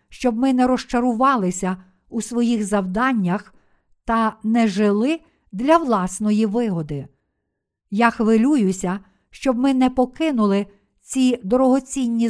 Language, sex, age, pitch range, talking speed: Ukrainian, female, 50-69, 205-255 Hz, 100 wpm